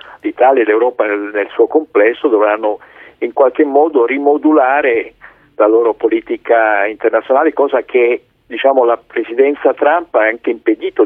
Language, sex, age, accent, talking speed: Italian, male, 50-69, native, 130 wpm